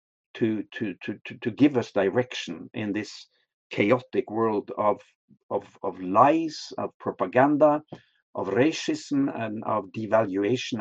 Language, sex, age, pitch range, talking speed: English, male, 50-69, 110-135 Hz, 120 wpm